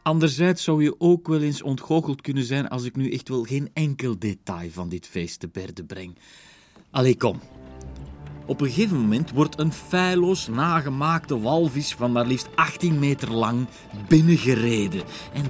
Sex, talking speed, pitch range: male, 165 wpm, 110-155 Hz